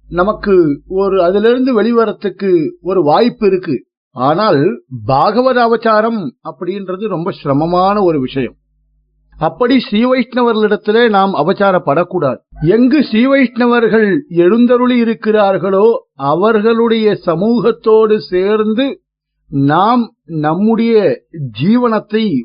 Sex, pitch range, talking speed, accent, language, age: male, 180-240 Hz, 85 wpm, native, Tamil, 50-69